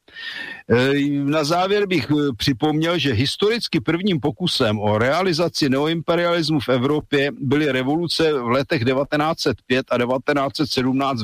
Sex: male